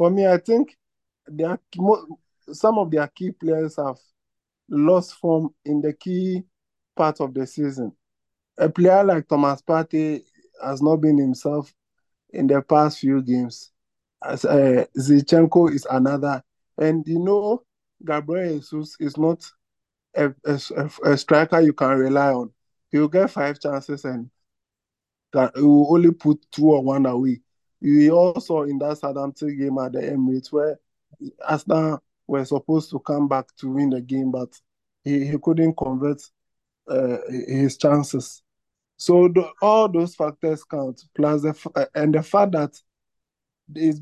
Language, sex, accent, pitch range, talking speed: English, male, Nigerian, 140-165 Hz, 145 wpm